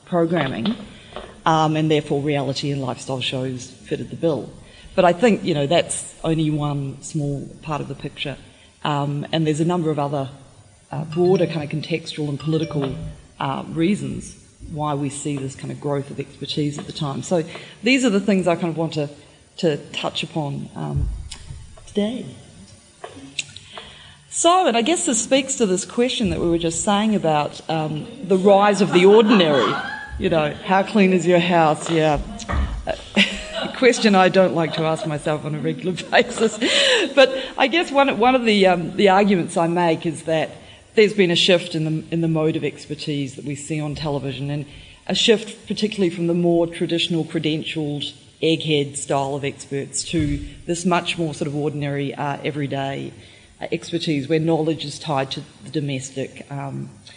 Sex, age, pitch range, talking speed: female, 30-49, 145-185 Hz, 180 wpm